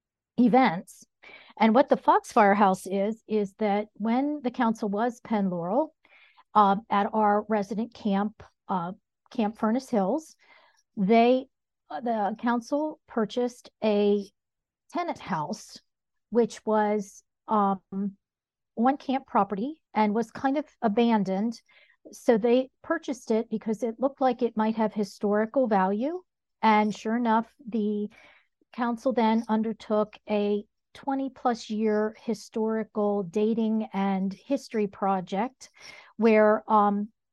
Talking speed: 120 wpm